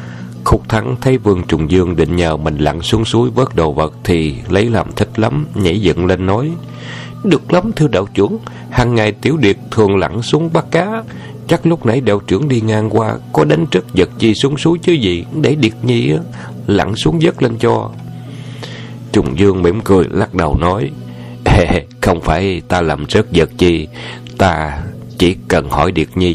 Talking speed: 190 wpm